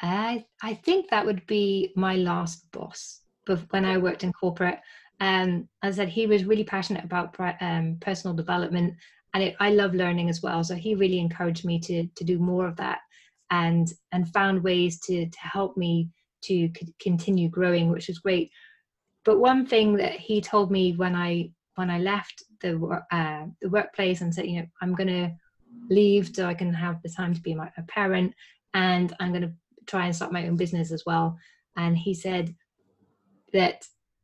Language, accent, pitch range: English, British, 170-200 Hz